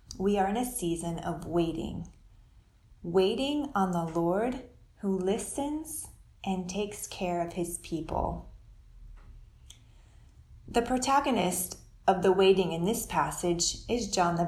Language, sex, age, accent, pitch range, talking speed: English, female, 30-49, American, 155-205 Hz, 125 wpm